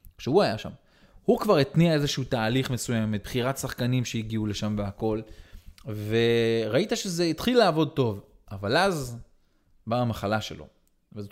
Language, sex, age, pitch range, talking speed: Hebrew, male, 20-39, 105-150 Hz, 145 wpm